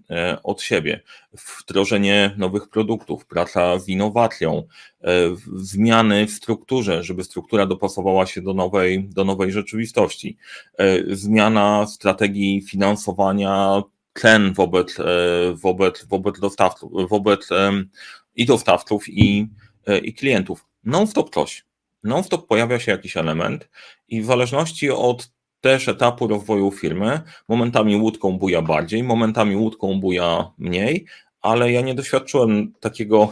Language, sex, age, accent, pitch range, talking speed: Polish, male, 30-49, native, 95-115 Hz, 115 wpm